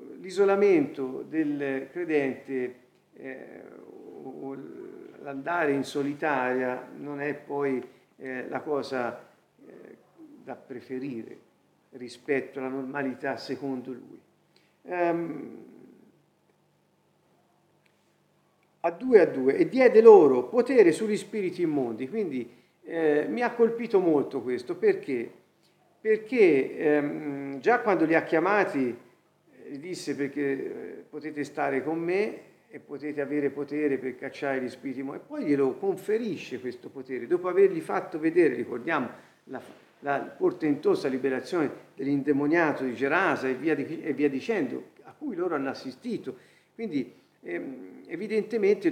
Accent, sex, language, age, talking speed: native, male, Italian, 50-69, 120 wpm